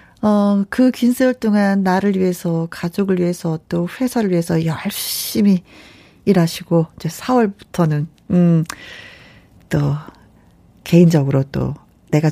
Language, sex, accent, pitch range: Korean, female, native, 170-255 Hz